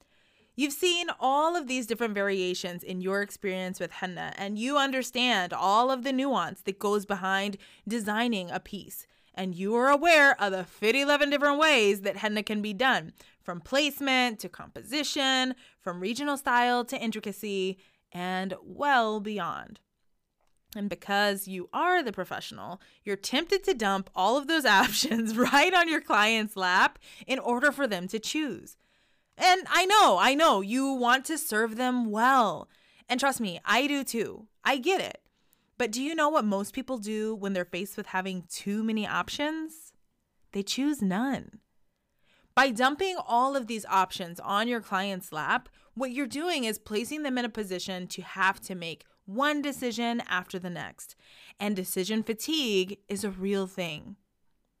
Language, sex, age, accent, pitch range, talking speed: English, female, 20-39, American, 195-270 Hz, 165 wpm